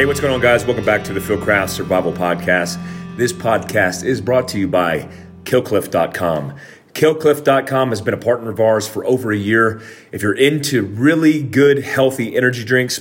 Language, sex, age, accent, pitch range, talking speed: English, male, 30-49, American, 100-120 Hz, 185 wpm